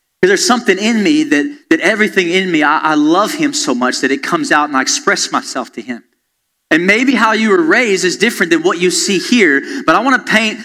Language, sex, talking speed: English, male, 250 wpm